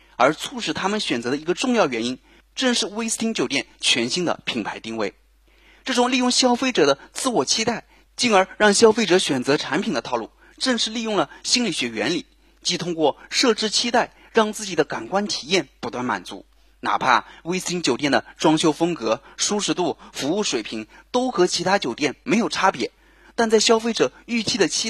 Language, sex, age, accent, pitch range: Chinese, male, 30-49, native, 160-235 Hz